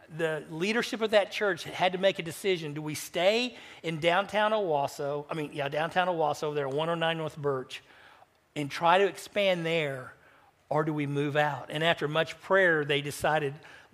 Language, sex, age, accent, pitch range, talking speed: English, male, 50-69, American, 150-180 Hz, 185 wpm